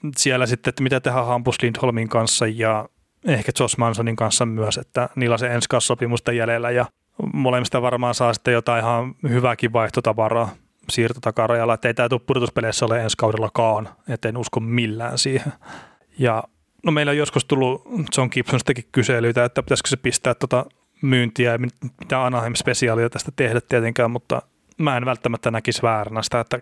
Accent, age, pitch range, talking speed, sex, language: native, 30-49, 115-130 Hz, 160 wpm, male, Finnish